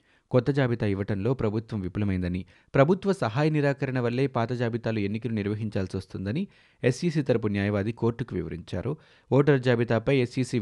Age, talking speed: 30-49, 125 wpm